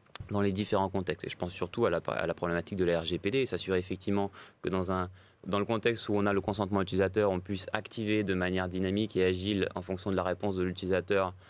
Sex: male